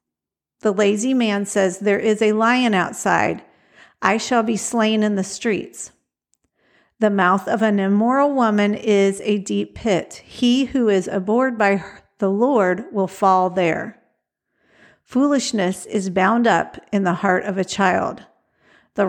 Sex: female